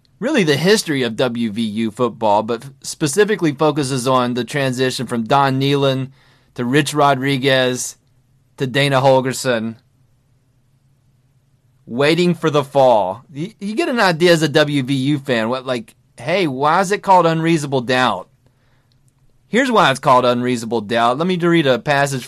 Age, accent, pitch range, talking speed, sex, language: 30-49, American, 125-165 Hz, 145 wpm, male, English